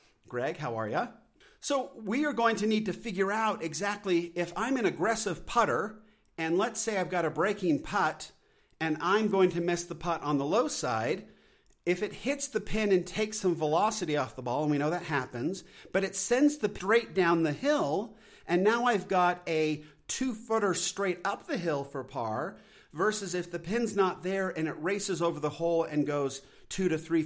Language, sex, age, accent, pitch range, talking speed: English, male, 50-69, American, 145-210 Hz, 205 wpm